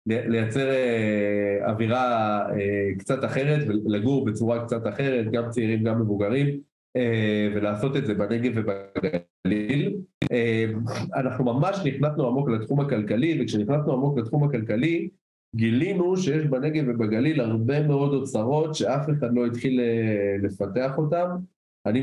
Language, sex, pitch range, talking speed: Hebrew, male, 110-140 Hz, 110 wpm